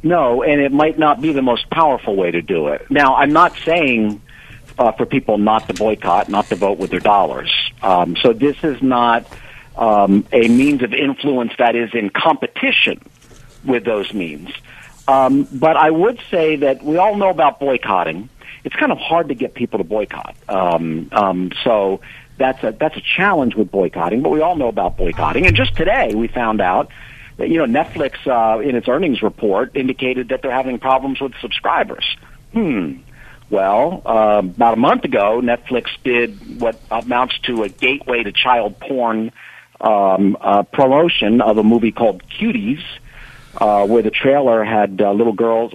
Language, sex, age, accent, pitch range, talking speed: English, male, 50-69, American, 110-140 Hz, 180 wpm